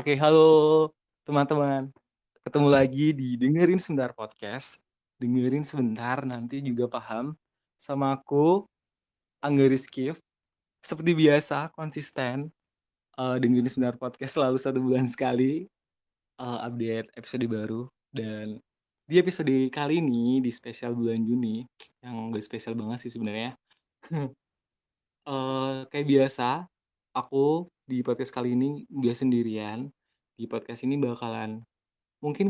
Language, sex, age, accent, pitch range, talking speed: Indonesian, male, 20-39, native, 120-145 Hz, 115 wpm